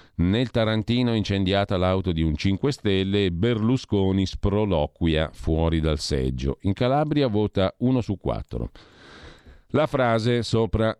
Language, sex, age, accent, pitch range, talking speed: Italian, male, 50-69, native, 80-105 Hz, 120 wpm